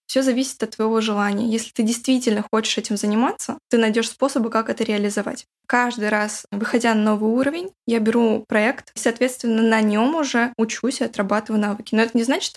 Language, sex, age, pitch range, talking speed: Russian, female, 10-29, 220-255 Hz, 185 wpm